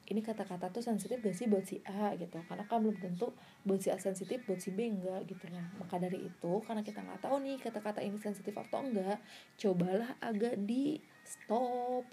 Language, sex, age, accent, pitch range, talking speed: Indonesian, female, 20-39, native, 190-240 Hz, 200 wpm